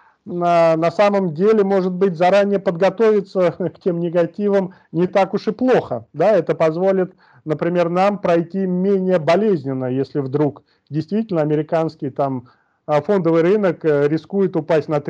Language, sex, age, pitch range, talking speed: Russian, male, 30-49, 150-180 Hz, 135 wpm